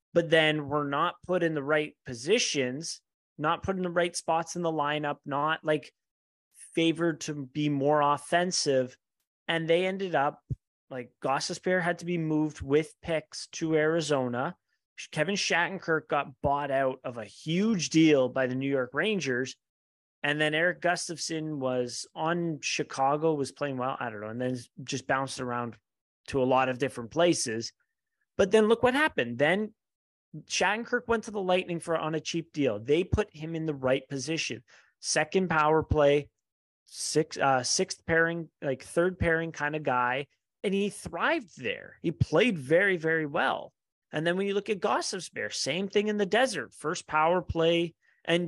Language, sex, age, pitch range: English, male, 30-49, 140-175 Hz